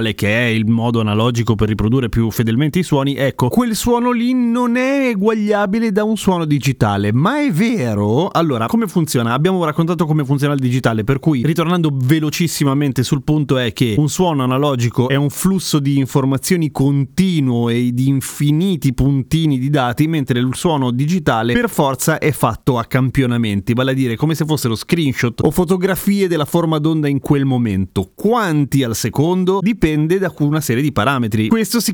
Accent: native